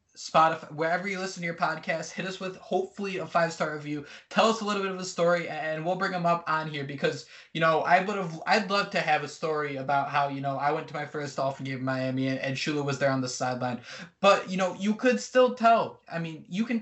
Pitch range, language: 150-185 Hz, English